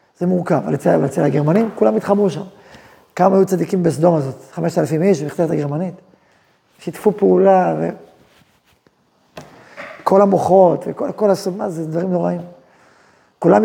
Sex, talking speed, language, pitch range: male, 125 wpm, Hebrew, 175-225 Hz